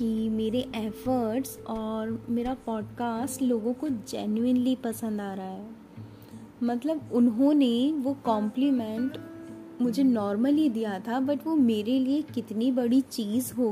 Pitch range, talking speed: 215-265 Hz, 125 wpm